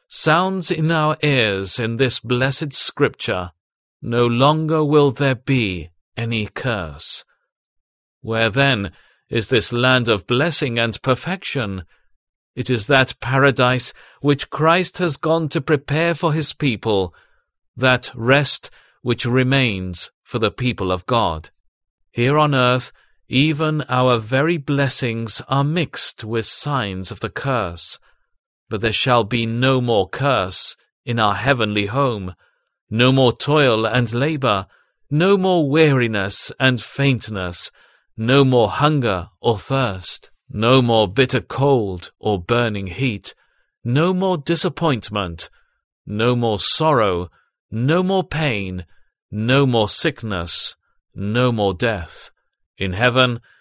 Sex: male